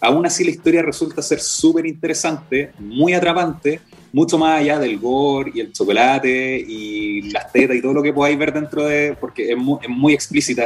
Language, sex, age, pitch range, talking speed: Spanish, male, 30-49, 125-155 Hz, 195 wpm